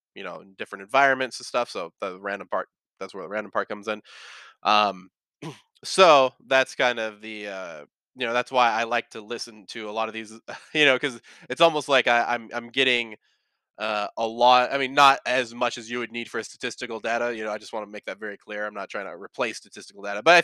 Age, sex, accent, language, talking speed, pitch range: 20-39, male, American, English, 240 wpm, 105-125 Hz